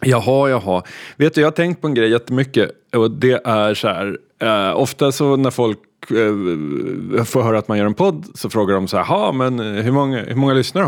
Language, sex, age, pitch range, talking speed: Swedish, male, 30-49, 100-130 Hz, 225 wpm